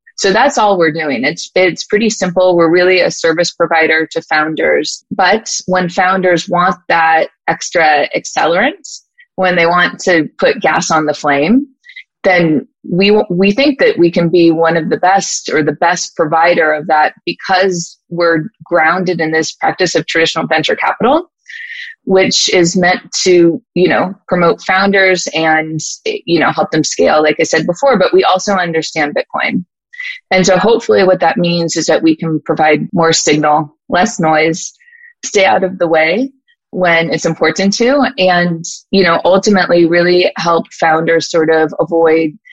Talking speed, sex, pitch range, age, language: 165 wpm, female, 160-195 Hz, 20-39, English